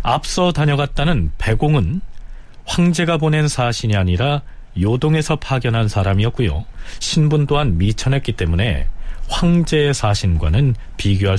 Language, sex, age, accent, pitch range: Korean, male, 40-59, native, 95-150 Hz